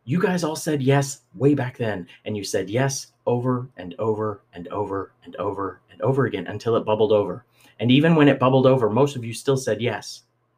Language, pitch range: English, 110-145 Hz